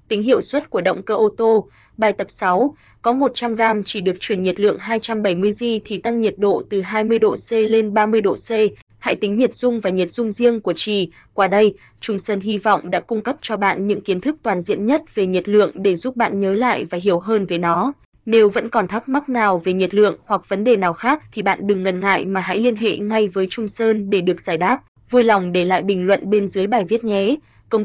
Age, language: 20-39, Vietnamese